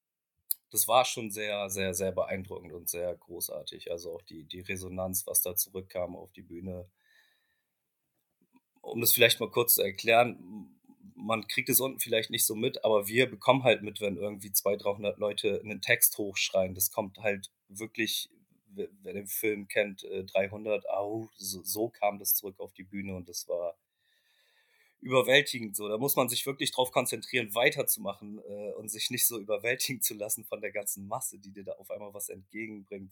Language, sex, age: German, male, 30-49